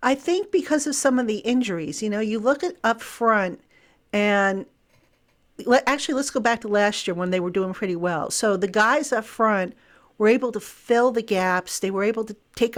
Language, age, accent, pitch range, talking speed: English, 50-69, American, 195-230 Hz, 210 wpm